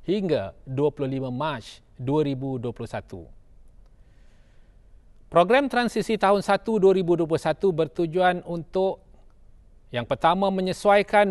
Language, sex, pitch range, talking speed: Malay, male, 140-195 Hz, 75 wpm